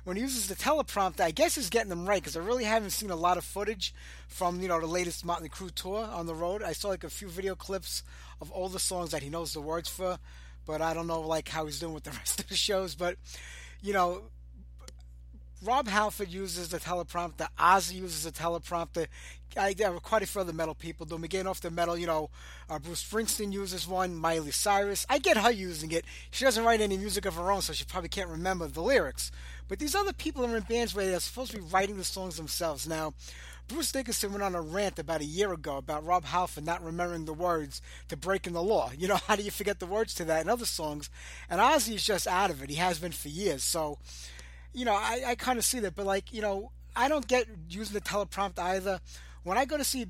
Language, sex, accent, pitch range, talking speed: English, male, American, 160-205 Hz, 245 wpm